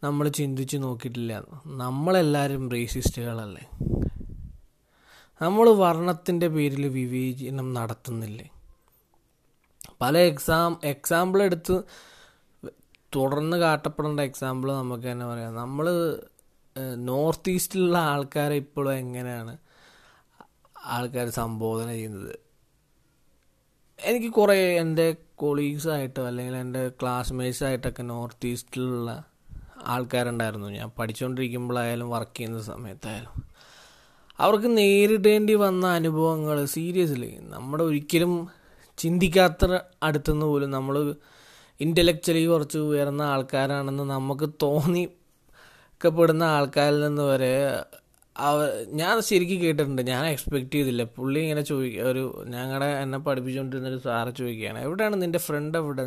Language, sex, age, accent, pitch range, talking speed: Malayalam, male, 20-39, native, 125-165 Hz, 90 wpm